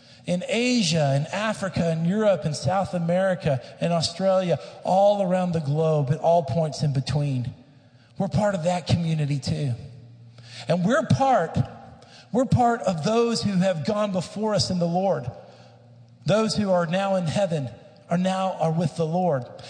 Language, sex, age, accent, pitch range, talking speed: English, male, 50-69, American, 155-210 Hz, 160 wpm